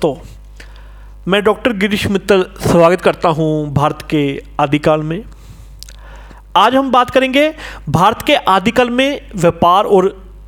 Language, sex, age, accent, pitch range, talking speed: Hindi, male, 40-59, native, 160-235 Hz, 125 wpm